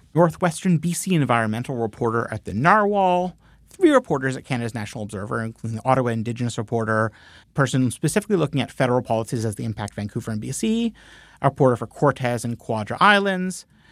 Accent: American